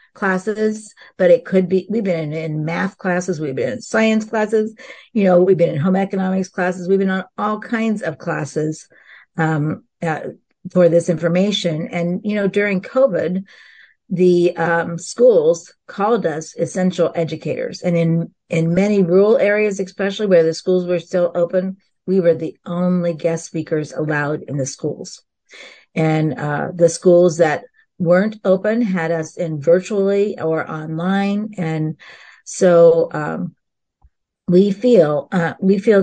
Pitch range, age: 165-195 Hz, 50-69